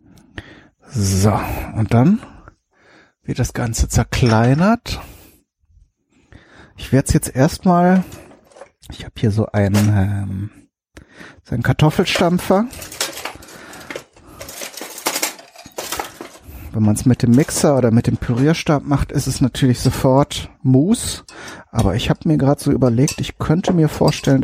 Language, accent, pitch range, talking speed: German, German, 105-135 Hz, 120 wpm